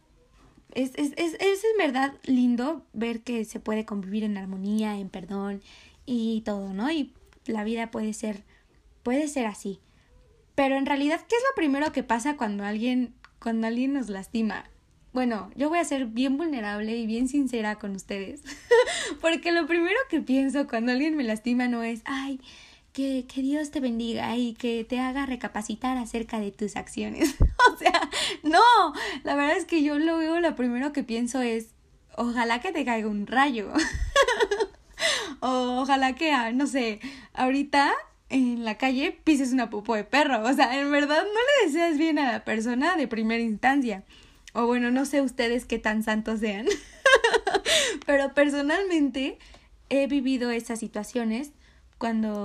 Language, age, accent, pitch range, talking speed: Spanish, 20-39, Mexican, 220-290 Hz, 165 wpm